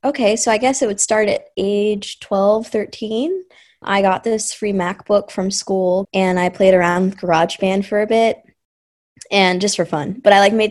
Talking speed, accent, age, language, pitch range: 195 wpm, American, 20-39, English, 185-220 Hz